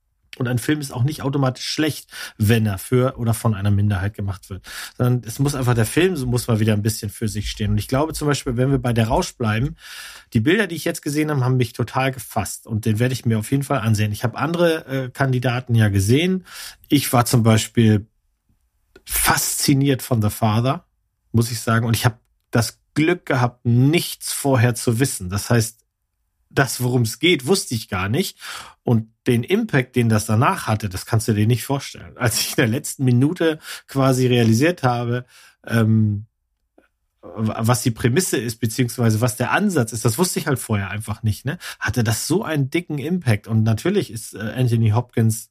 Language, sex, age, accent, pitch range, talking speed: German, male, 40-59, German, 110-135 Hz, 200 wpm